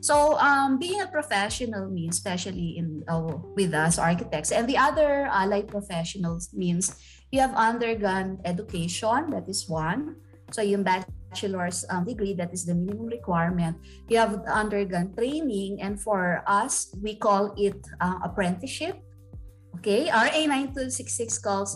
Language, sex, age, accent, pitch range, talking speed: Filipino, female, 20-39, native, 175-250 Hz, 145 wpm